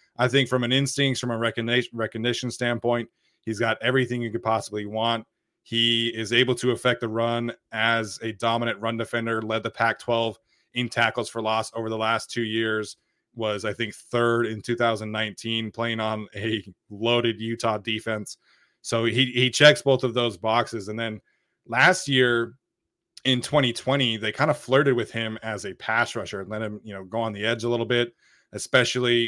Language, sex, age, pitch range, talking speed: English, male, 20-39, 110-120 Hz, 180 wpm